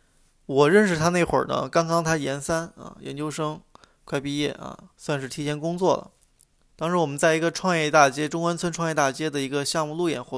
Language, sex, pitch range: Chinese, male, 135-170 Hz